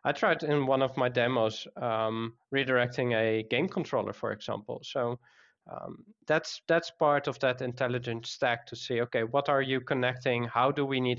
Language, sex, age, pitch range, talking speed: English, male, 20-39, 115-135 Hz, 180 wpm